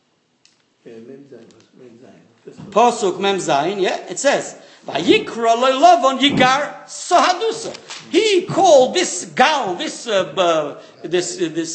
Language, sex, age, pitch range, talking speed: English, male, 50-69, 220-350 Hz, 105 wpm